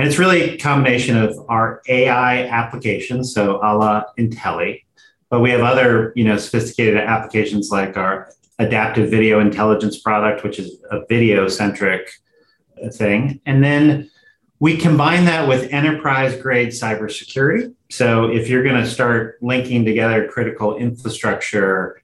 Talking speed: 140 wpm